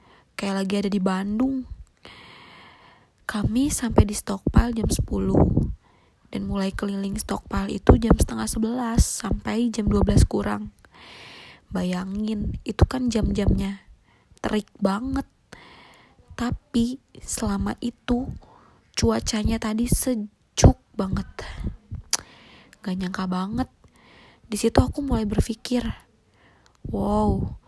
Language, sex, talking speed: Indonesian, female, 95 wpm